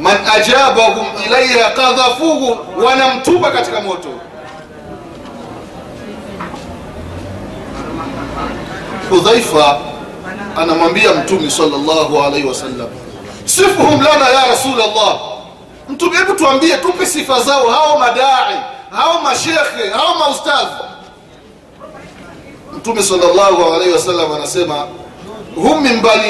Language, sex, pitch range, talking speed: Swahili, male, 190-285 Hz, 80 wpm